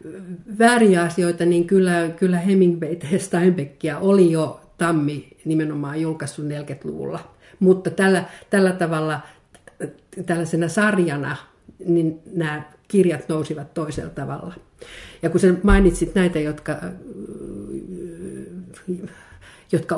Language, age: Finnish, 50-69